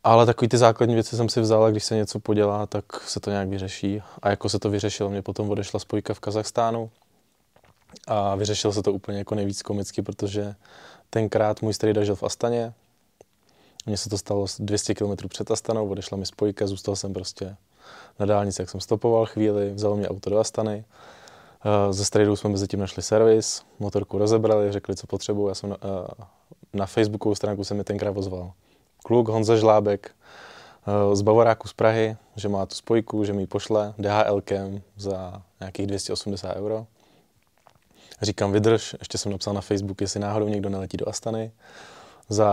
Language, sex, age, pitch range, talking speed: Czech, male, 20-39, 100-110 Hz, 175 wpm